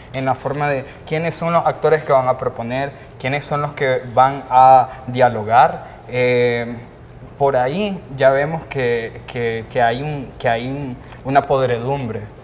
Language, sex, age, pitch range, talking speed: Spanish, male, 20-39, 125-155 Hz, 165 wpm